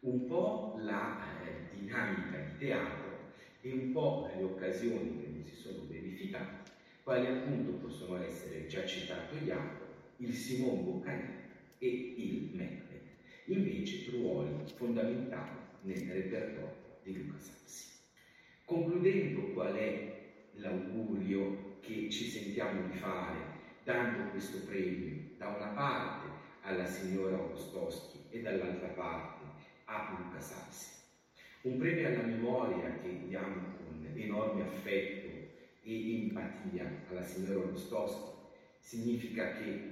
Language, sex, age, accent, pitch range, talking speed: Italian, male, 50-69, native, 90-120 Hz, 115 wpm